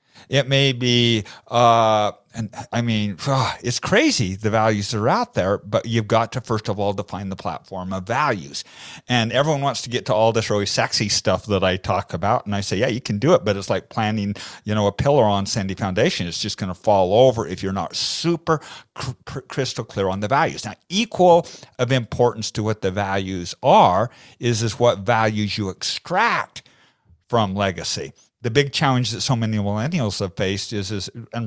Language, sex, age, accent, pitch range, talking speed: English, male, 50-69, American, 100-125 Hz, 205 wpm